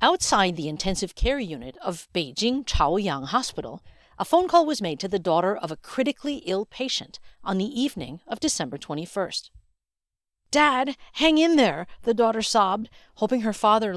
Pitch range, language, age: 175-260 Hz, English, 50-69